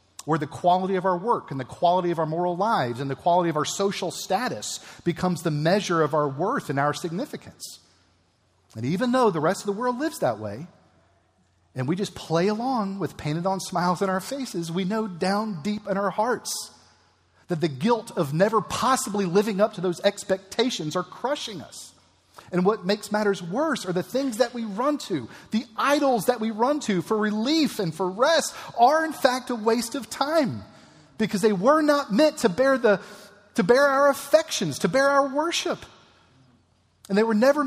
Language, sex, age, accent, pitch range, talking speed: English, male, 40-59, American, 175-240 Hz, 195 wpm